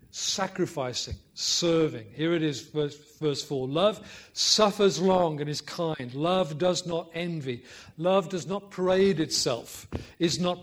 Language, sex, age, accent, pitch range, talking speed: English, male, 50-69, British, 135-180 Hz, 140 wpm